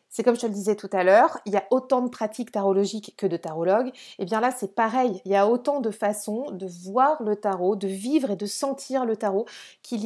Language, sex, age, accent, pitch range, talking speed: French, female, 30-49, French, 205-265 Hz, 250 wpm